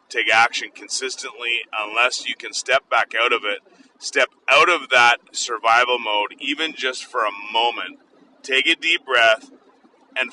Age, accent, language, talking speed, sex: 30-49, American, English, 155 wpm, male